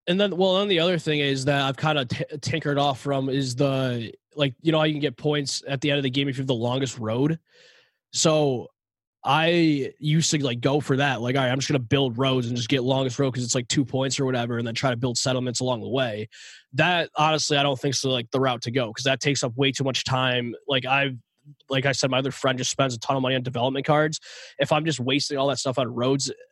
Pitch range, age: 125-150 Hz, 20-39